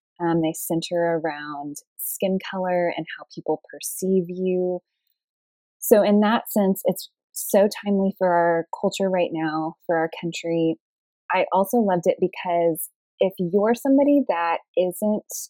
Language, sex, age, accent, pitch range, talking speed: English, female, 20-39, American, 165-190 Hz, 140 wpm